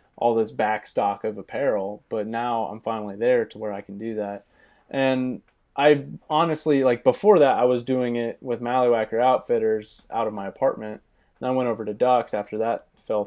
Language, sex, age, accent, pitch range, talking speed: English, male, 20-39, American, 110-130 Hz, 195 wpm